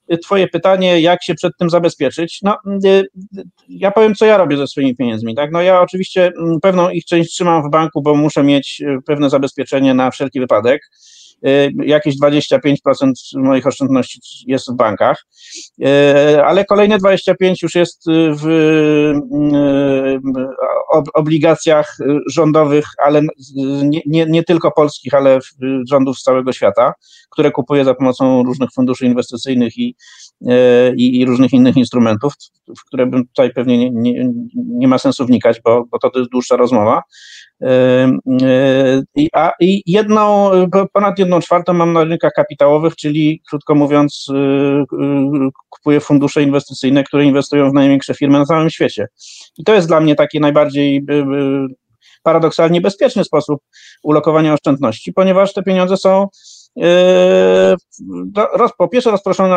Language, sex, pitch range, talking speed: Polish, male, 135-180 Hz, 130 wpm